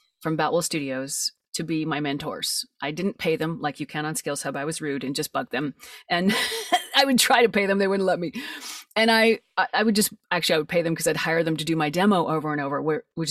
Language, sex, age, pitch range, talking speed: English, female, 30-49, 160-215 Hz, 255 wpm